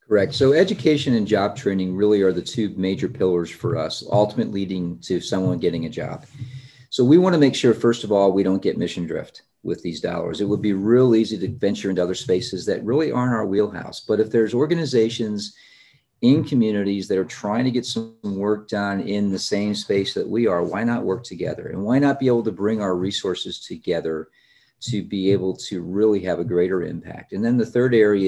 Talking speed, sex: 215 wpm, male